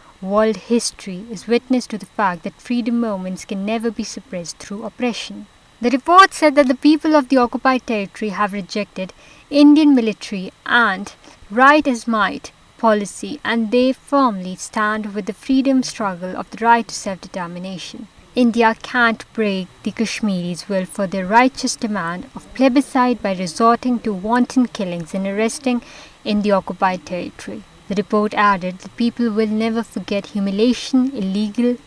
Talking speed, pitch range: 155 wpm, 195-240 Hz